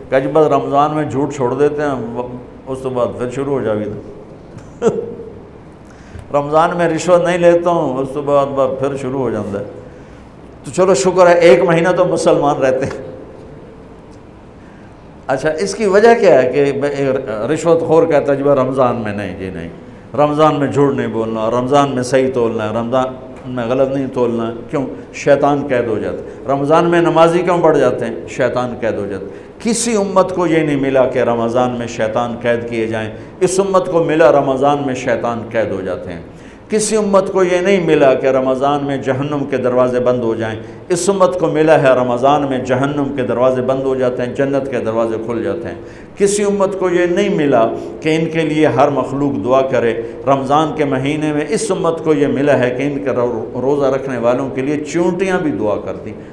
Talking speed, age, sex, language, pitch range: 195 wpm, 60-79, male, Urdu, 120-160 Hz